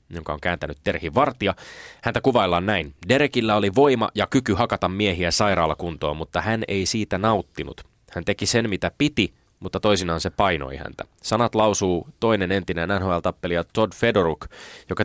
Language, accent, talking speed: Finnish, native, 155 wpm